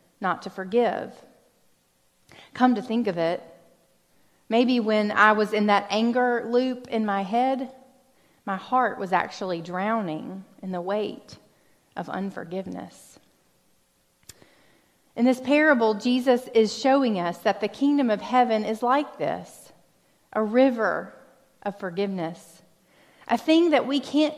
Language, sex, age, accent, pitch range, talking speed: English, female, 30-49, American, 190-255 Hz, 130 wpm